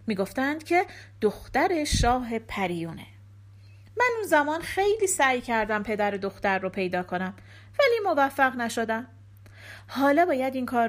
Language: Persian